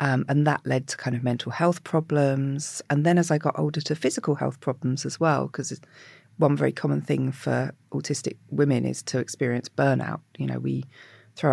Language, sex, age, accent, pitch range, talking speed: English, female, 40-59, British, 135-170 Hz, 200 wpm